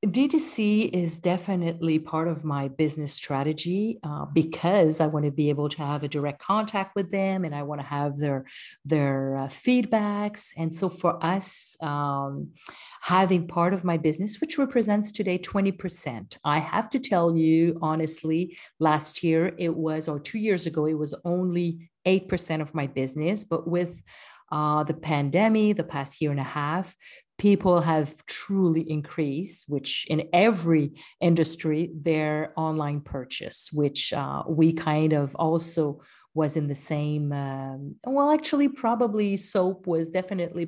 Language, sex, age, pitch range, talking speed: English, female, 40-59, 150-185 Hz, 155 wpm